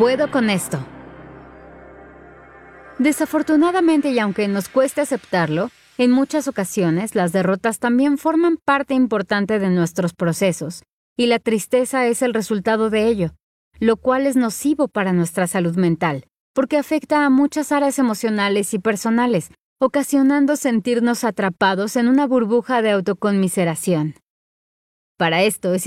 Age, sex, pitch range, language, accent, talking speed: 30-49, female, 190-260 Hz, Spanish, Mexican, 130 wpm